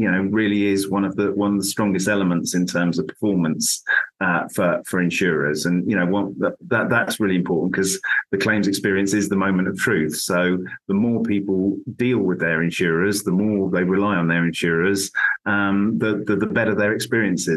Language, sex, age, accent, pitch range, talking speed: English, male, 30-49, British, 95-105 Hz, 205 wpm